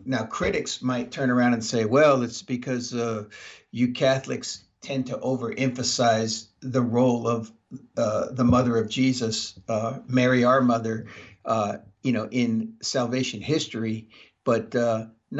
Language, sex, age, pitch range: English, male, 50-69, 115-140 Hz